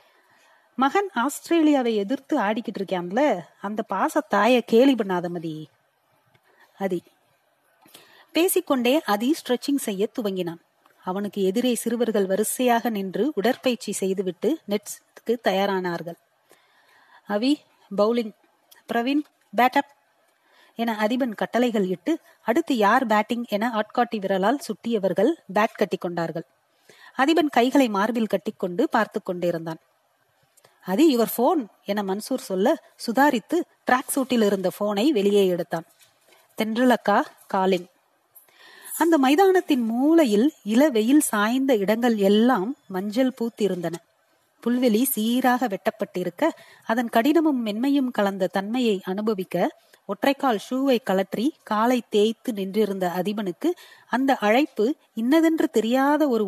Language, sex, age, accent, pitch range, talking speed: Tamil, female, 30-49, native, 200-265 Hz, 70 wpm